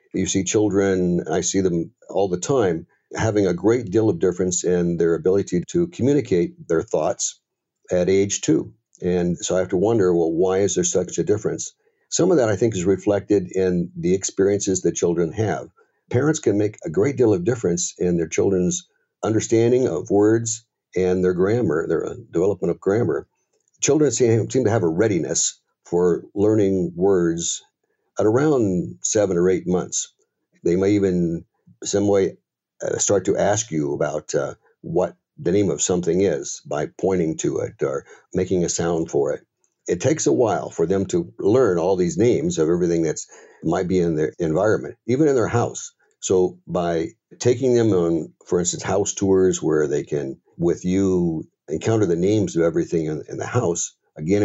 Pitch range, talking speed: 85-110 Hz, 175 wpm